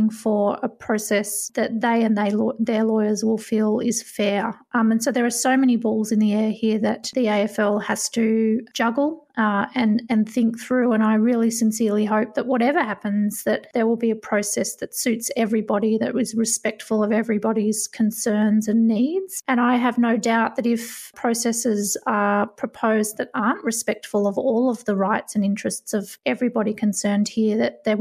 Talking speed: 185 wpm